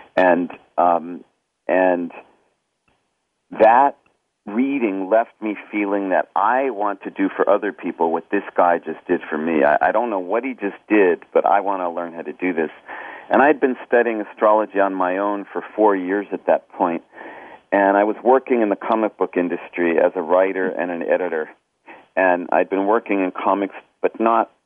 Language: English